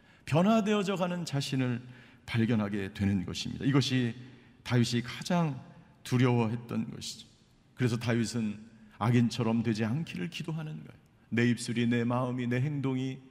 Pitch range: 115-155 Hz